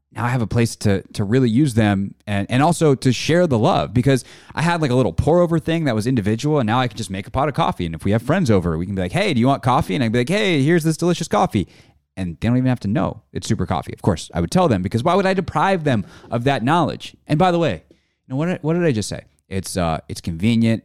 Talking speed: 295 wpm